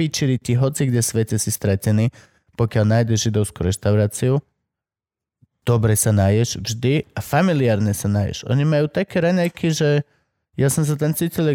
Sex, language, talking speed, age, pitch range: male, Slovak, 150 wpm, 20-39, 110-155 Hz